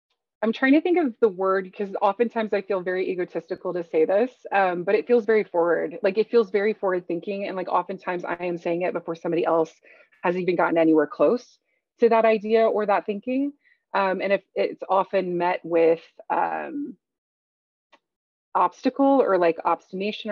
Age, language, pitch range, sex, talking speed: 20-39, English, 185-240 Hz, female, 180 wpm